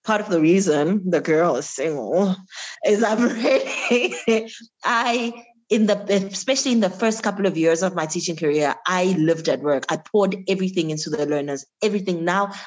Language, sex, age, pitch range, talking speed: English, female, 20-39, 155-190 Hz, 175 wpm